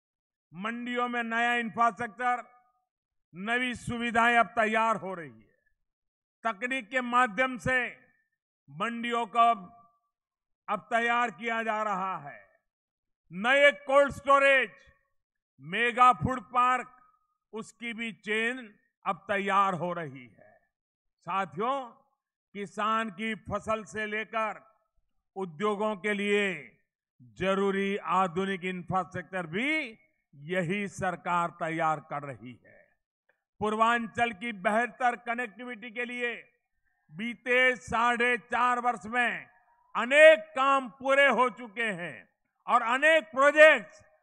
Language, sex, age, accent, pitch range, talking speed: Hindi, male, 50-69, native, 205-250 Hz, 105 wpm